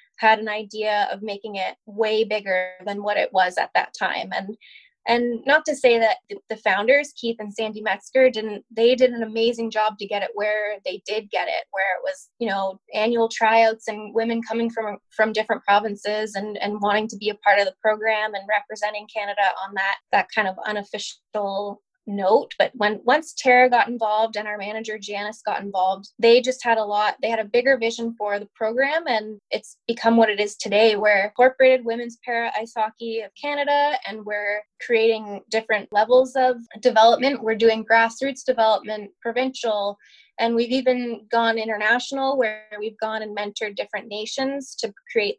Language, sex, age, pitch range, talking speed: English, female, 20-39, 210-250 Hz, 185 wpm